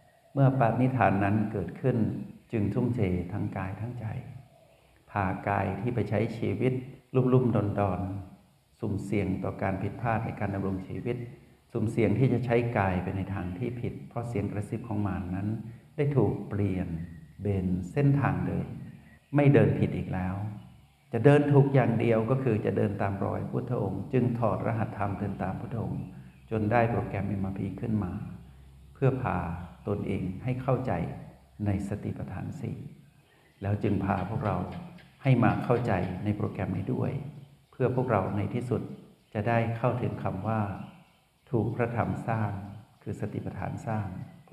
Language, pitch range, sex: Thai, 100-125 Hz, male